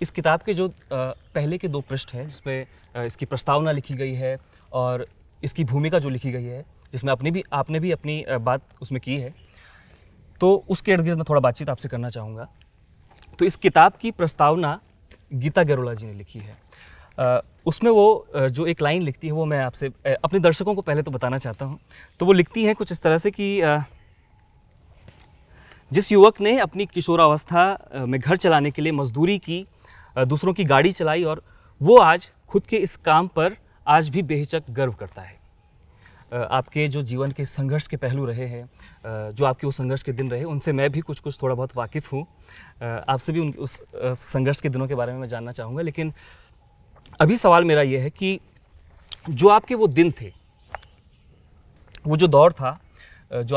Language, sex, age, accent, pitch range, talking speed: Hindi, male, 30-49, native, 120-160 Hz, 185 wpm